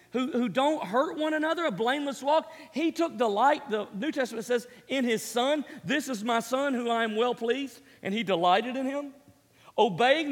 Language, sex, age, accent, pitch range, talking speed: English, male, 40-59, American, 240-325 Hz, 200 wpm